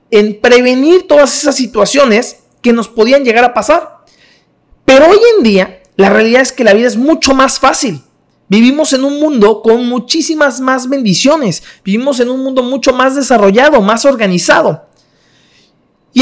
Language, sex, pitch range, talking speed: Spanish, male, 190-260 Hz, 160 wpm